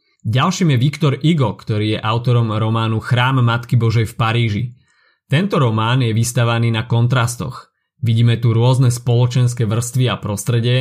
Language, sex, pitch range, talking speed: Slovak, male, 115-135 Hz, 145 wpm